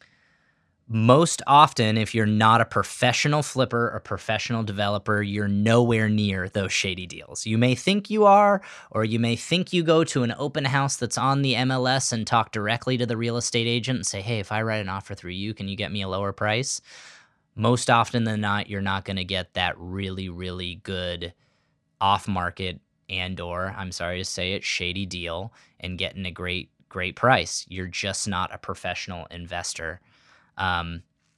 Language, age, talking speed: English, 20-39, 185 wpm